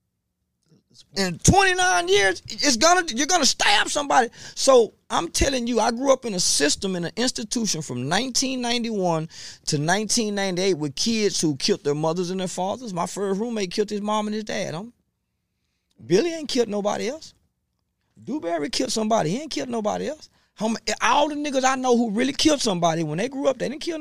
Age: 30-49